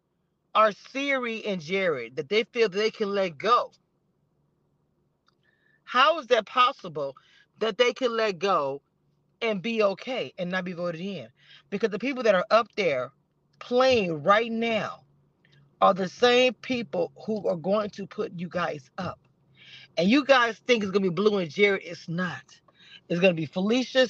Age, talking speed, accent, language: 40-59, 170 wpm, American, English